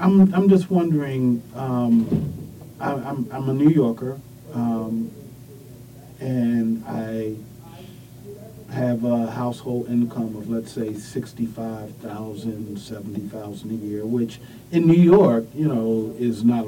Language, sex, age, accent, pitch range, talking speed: English, male, 40-59, American, 115-130 Hz, 120 wpm